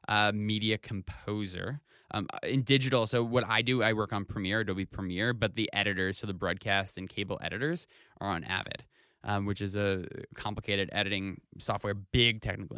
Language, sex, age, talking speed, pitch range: English, male, 20-39, 175 wpm, 100-120 Hz